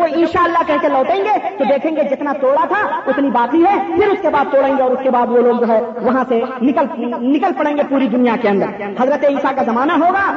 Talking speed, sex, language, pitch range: 250 wpm, female, Urdu, 265-360 Hz